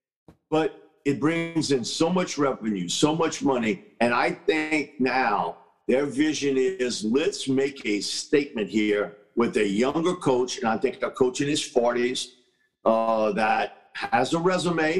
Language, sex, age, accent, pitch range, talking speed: English, male, 50-69, American, 125-160 Hz, 155 wpm